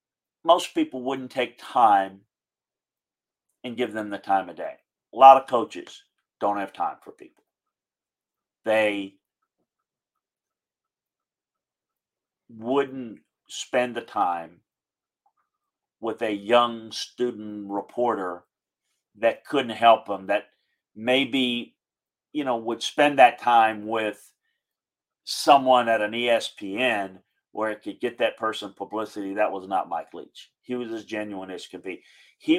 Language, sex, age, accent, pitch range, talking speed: English, male, 50-69, American, 105-125 Hz, 125 wpm